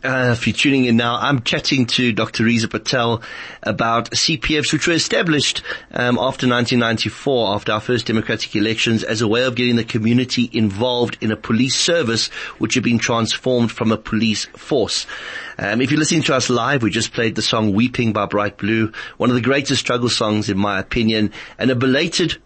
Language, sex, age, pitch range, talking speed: English, male, 30-49, 110-130 Hz, 195 wpm